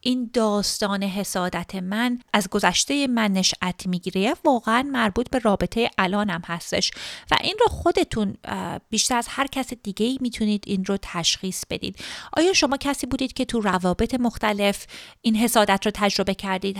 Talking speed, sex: 155 wpm, female